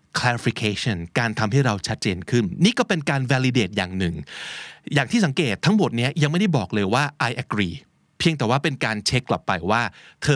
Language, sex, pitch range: Thai, male, 110-155 Hz